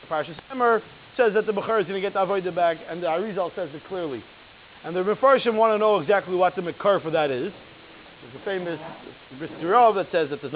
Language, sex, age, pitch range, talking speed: English, male, 30-49, 175-215 Hz, 220 wpm